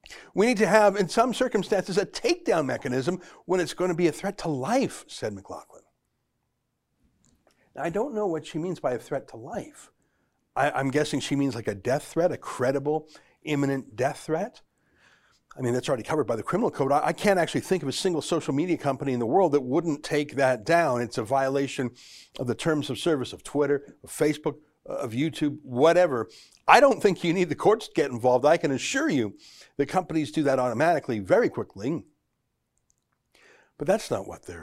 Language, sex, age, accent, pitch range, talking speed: English, male, 60-79, American, 125-170 Hz, 200 wpm